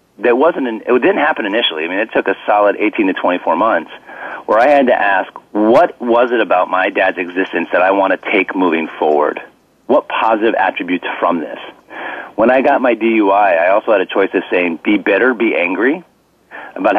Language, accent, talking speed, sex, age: English, American, 205 wpm, male, 40-59